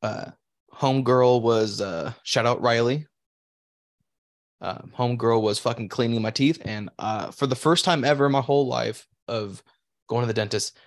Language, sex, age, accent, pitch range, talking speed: English, male, 20-39, American, 110-145 Hz, 165 wpm